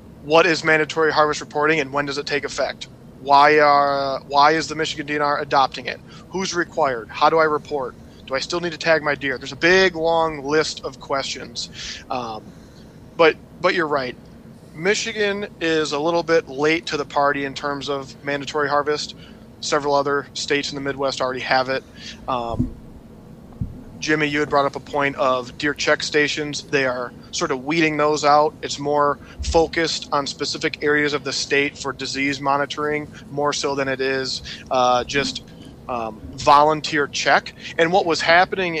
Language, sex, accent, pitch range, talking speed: English, male, American, 140-160 Hz, 175 wpm